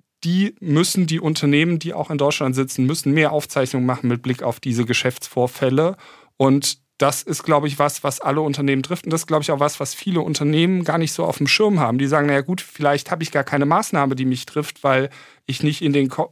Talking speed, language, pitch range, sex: 230 wpm, German, 135-155 Hz, male